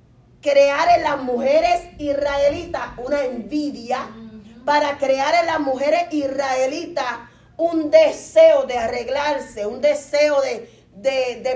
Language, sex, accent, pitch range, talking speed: Spanish, female, American, 230-290 Hz, 110 wpm